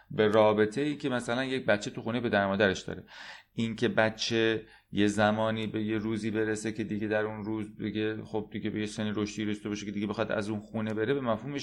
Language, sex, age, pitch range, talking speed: Persian, male, 30-49, 95-130 Hz, 215 wpm